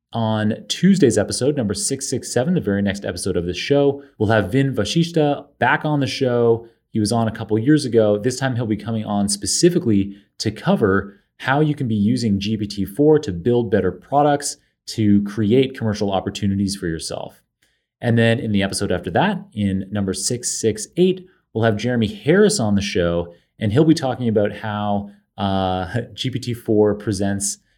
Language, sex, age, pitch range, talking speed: English, male, 30-49, 100-130 Hz, 170 wpm